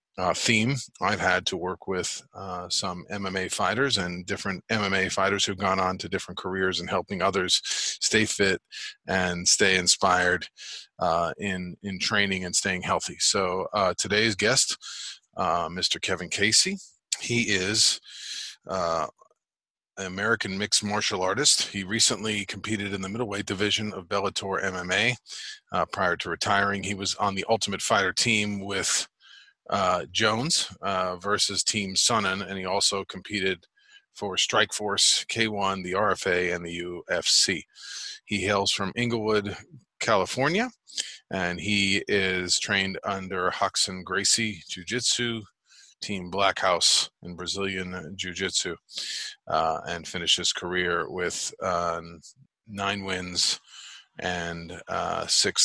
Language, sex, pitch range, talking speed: English, male, 95-105 Hz, 135 wpm